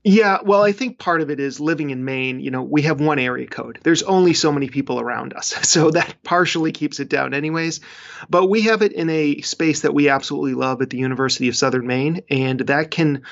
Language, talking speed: English, 235 wpm